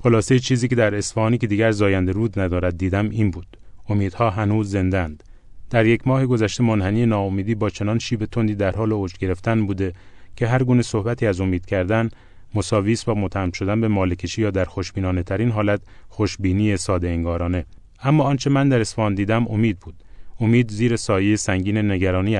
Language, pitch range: Persian, 95-115 Hz